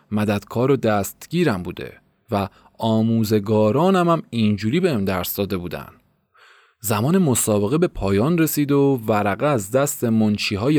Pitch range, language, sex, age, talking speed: 105-155 Hz, Persian, male, 30-49, 120 wpm